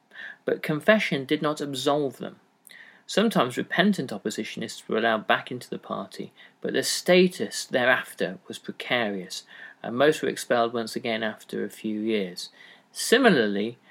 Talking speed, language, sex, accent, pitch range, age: 140 wpm, English, male, British, 115-155 Hz, 40-59